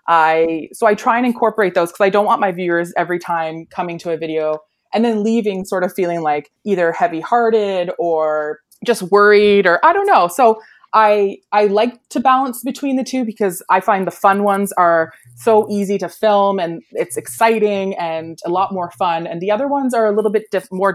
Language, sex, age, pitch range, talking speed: English, female, 20-39, 165-220 Hz, 210 wpm